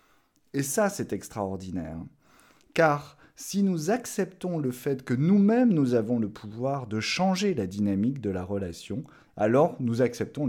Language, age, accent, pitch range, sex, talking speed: French, 30-49, French, 90-135 Hz, male, 150 wpm